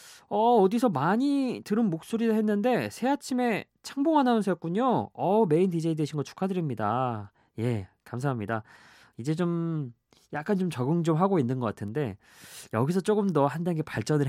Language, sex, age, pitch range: Korean, male, 20-39, 115-185 Hz